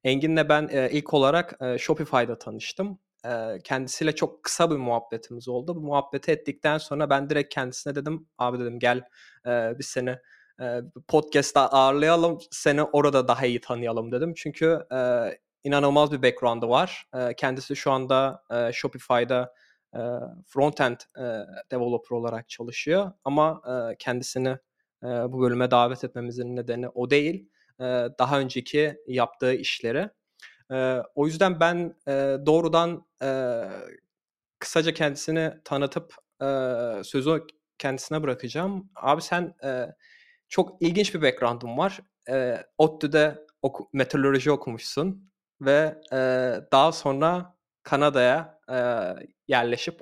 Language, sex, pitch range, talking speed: Turkish, male, 125-155 Hz, 115 wpm